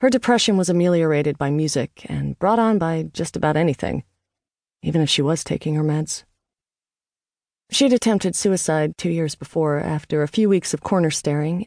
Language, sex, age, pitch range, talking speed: English, female, 40-59, 150-185 Hz, 170 wpm